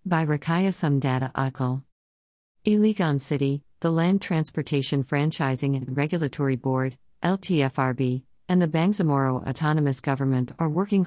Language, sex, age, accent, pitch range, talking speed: English, female, 50-69, American, 130-160 Hz, 115 wpm